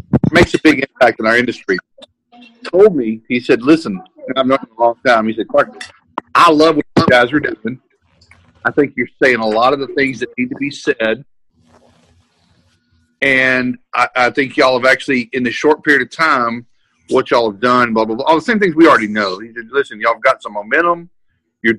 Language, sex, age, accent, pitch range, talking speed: English, male, 40-59, American, 105-135 Hz, 215 wpm